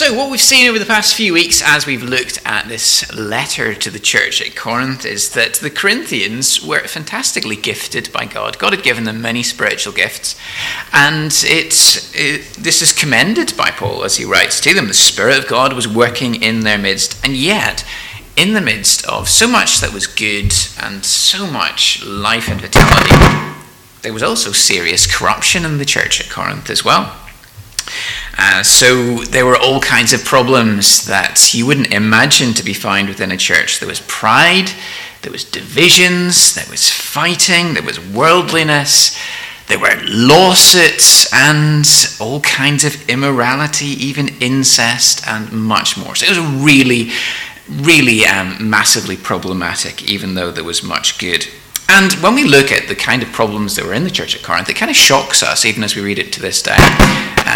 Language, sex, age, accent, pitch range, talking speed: English, male, 30-49, British, 110-150 Hz, 180 wpm